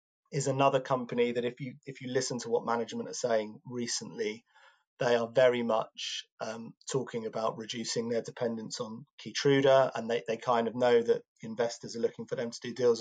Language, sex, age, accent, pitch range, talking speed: English, male, 30-49, British, 125-170 Hz, 195 wpm